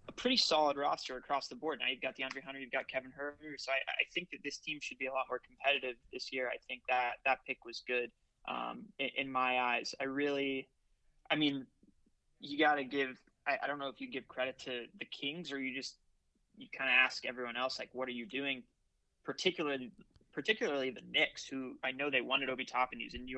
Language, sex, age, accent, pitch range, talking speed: English, male, 20-39, American, 130-145 Hz, 230 wpm